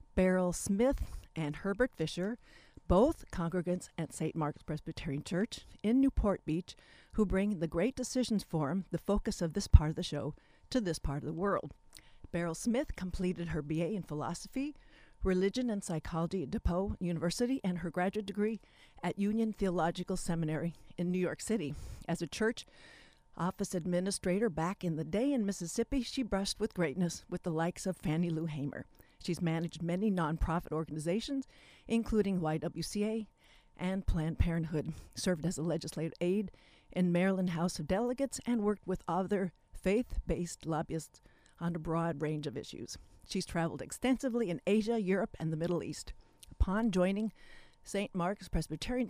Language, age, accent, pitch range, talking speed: English, 50-69, American, 165-210 Hz, 160 wpm